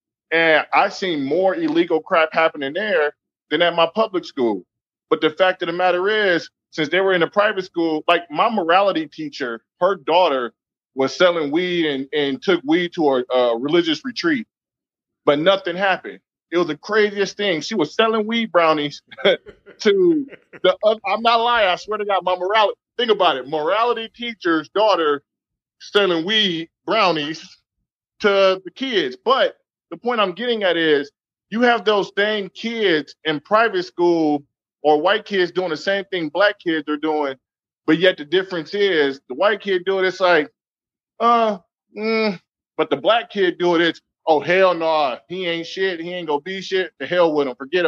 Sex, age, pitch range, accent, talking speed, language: male, 20-39, 165-215 Hz, American, 185 wpm, English